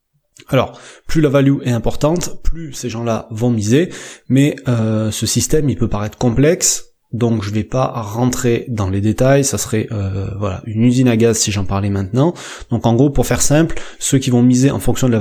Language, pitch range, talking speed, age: French, 110-135 Hz, 210 wpm, 20-39